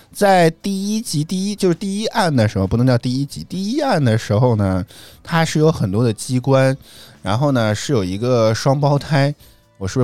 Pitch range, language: 105-145 Hz, Chinese